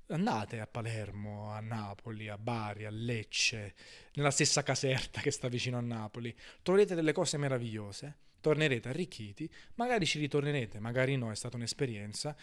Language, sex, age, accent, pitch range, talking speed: Italian, male, 20-39, native, 115-140 Hz, 150 wpm